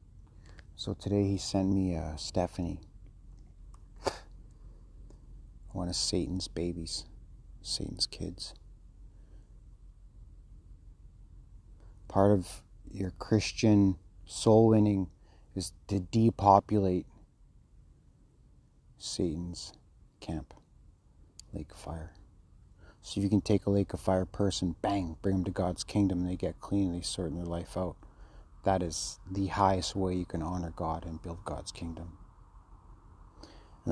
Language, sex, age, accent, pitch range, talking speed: English, male, 30-49, American, 85-100 Hz, 120 wpm